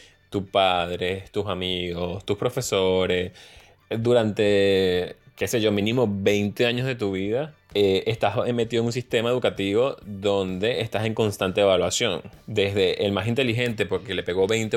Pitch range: 100-120 Hz